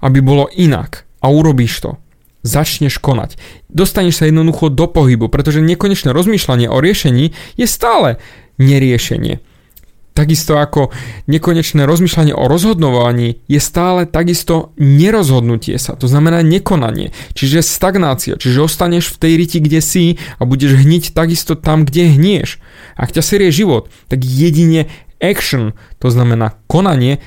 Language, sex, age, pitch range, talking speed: Slovak, male, 20-39, 125-165 Hz, 135 wpm